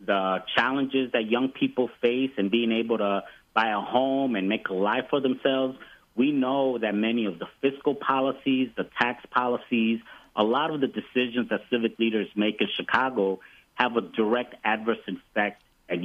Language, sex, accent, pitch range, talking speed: English, male, American, 100-120 Hz, 175 wpm